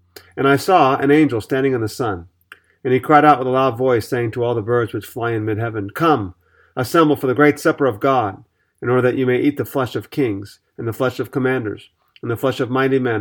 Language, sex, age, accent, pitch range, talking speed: English, male, 40-59, American, 110-140 Hz, 255 wpm